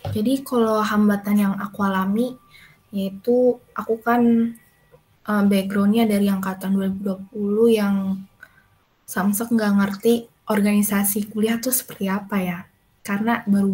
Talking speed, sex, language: 110 wpm, female, Indonesian